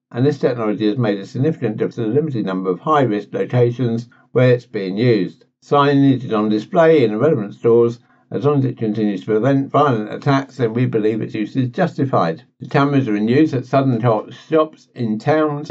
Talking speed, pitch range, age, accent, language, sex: 205 wpm, 110-140 Hz, 60-79, British, English, male